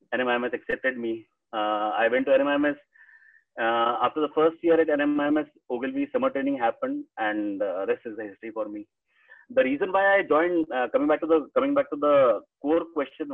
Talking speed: 195 wpm